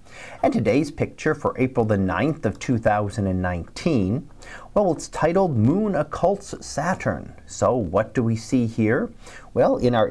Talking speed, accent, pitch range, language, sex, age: 140 wpm, American, 110-140 Hz, English, male, 40-59